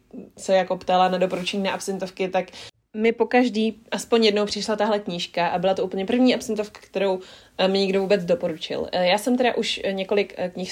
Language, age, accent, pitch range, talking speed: Czech, 20-39, native, 185-215 Hz, 185 wpm